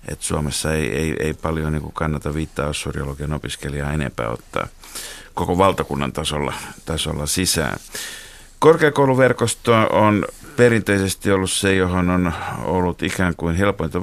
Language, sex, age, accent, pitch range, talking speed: Finnish, male, 50-69, native, 75-90 Hz, 120 wpm